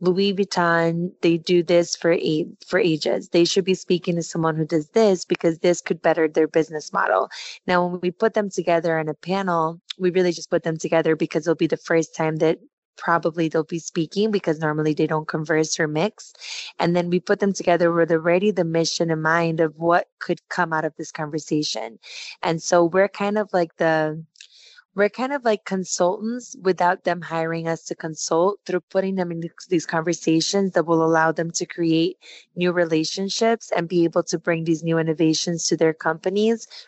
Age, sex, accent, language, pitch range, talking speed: 20-39, female, American, English, 160-180 Hz, 195 wpm